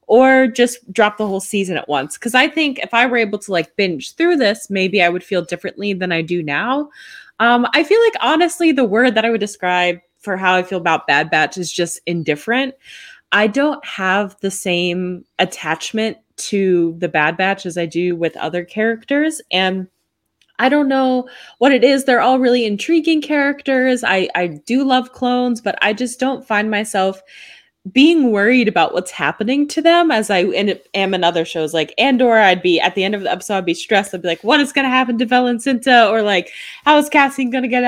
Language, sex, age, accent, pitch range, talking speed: English, female, 20-39, American, 180-260 Hz, 210 wpm